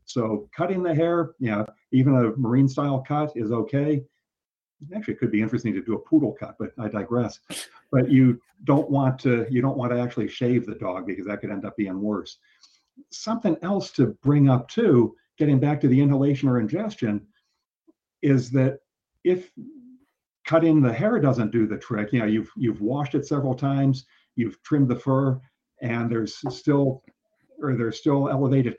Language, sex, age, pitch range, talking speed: English, male, 50-69, 110-135 Hz, 180 wpm